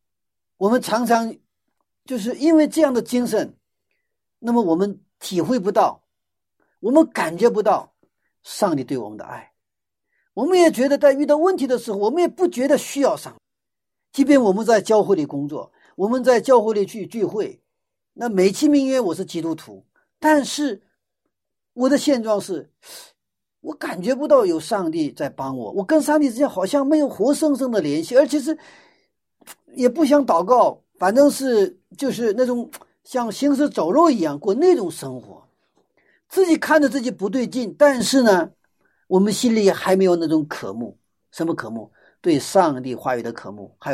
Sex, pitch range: male, 195-295 Hz